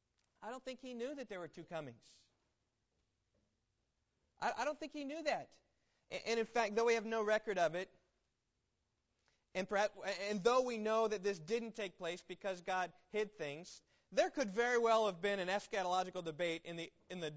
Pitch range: 150-235 Hz